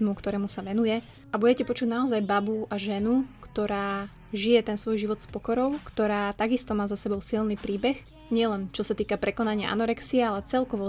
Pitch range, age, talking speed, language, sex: 205-230 Hz, 20-39, 175 wpm, Slovak, female